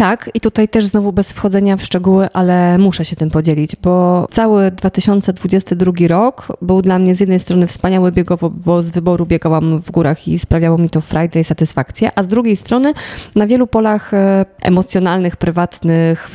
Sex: female